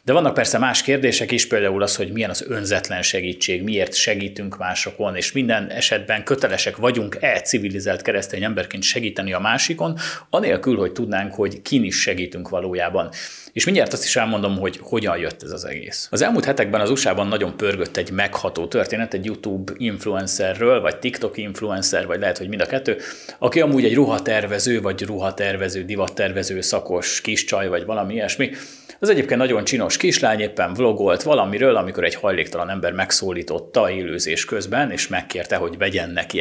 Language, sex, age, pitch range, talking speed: Hungarian, male, 30-49, 95-115 Hz, 165 wpm